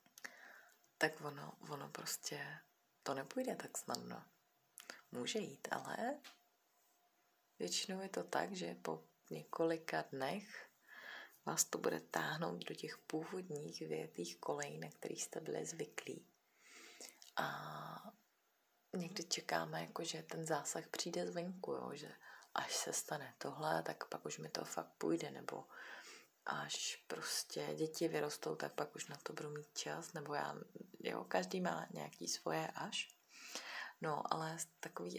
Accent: native